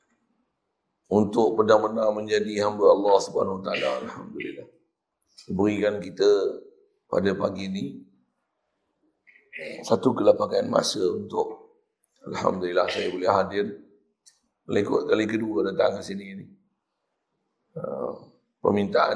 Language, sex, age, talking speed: Malay, male, 50-69, 85 wpm